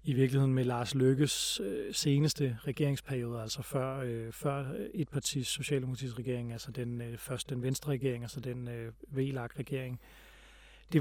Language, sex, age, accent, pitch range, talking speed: Danish, male, 30-49, native, 130-155 Hz, 125 wpm